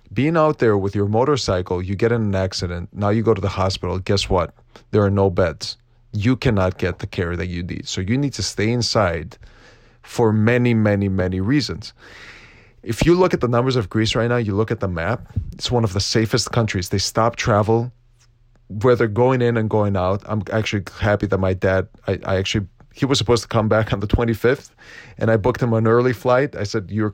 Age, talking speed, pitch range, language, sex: 30-49, 225 wpm, 100-120 Hz, English, male